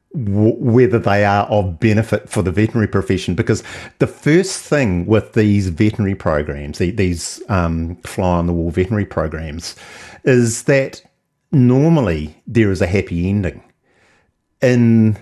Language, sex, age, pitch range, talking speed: English, male, 50-69, 85-110 Hz, 120 wpm